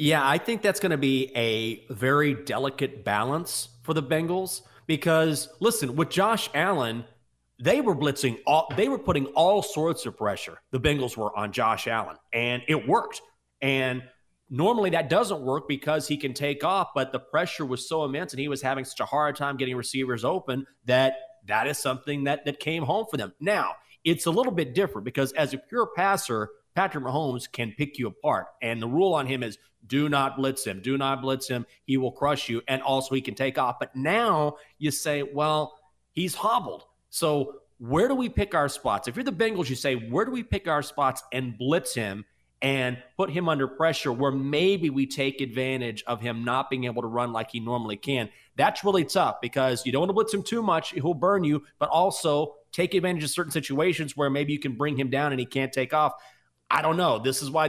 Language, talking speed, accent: English, 215 wpm, American